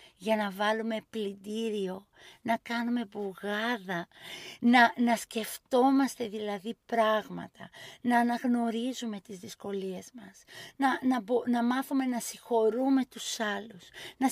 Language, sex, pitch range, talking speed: Greek, female, 210-260 Hz, 115 wpm